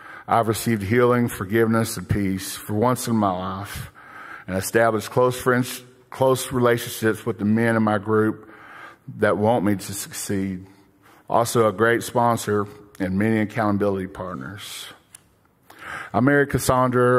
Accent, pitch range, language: American, 105-120 Hz, English